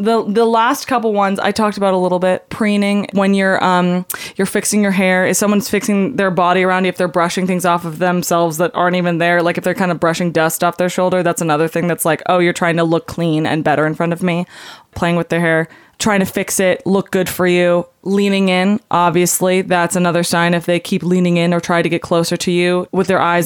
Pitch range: 170-195 Hz